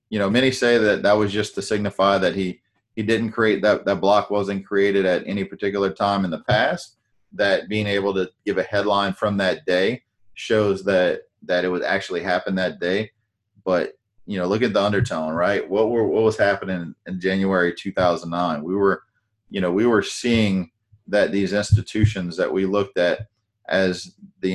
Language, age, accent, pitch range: English, 30-49, American, 95-110 Hz